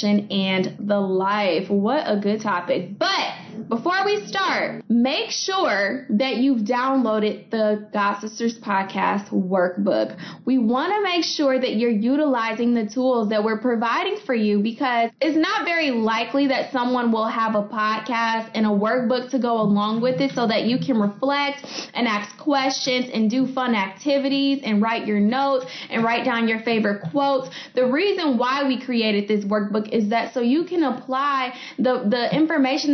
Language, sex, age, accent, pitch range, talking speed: English, female, 10-29, American, 220-275 Hz, 170 wpm